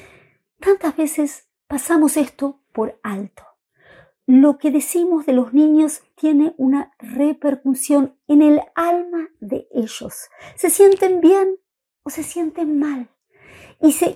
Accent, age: American, 50-69